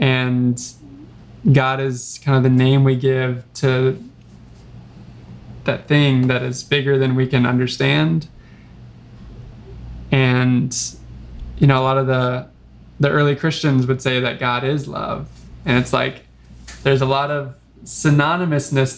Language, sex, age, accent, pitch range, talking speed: English, male, 20-39, American, 125-145 Hz, 135 wpm